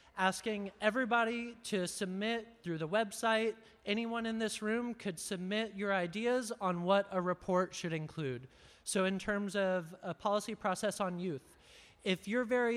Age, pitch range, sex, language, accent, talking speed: 20-39, 180-220 Hz, male, English, American, 155 wpm